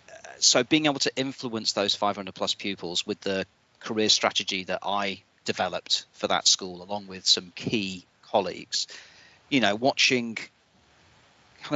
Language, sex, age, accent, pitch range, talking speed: English, male, 40-59, British, 95-120 Hz, 145 wpm